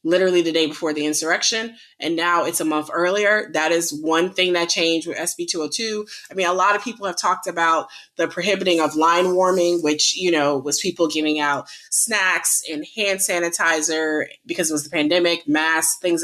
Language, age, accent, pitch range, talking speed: English, 20-39, American, 160-205 Hz, 195 wpm